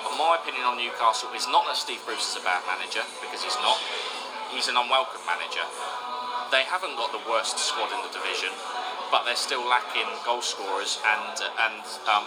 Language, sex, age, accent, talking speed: English, male, 20-39, British, 185 wpm